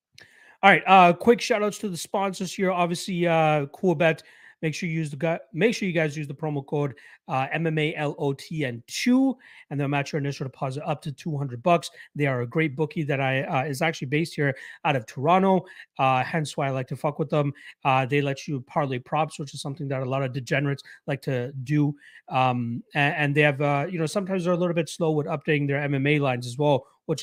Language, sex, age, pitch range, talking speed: English, male, 30-49, 135-160 Hz, 230 wpm